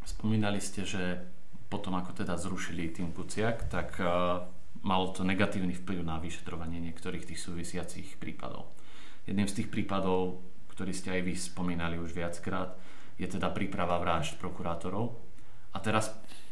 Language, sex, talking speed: Slovak, male, 140 wpm